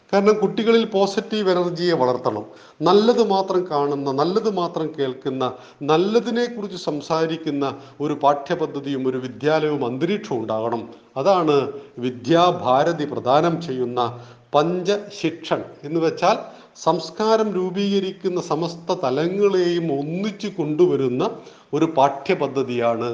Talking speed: 90 wpm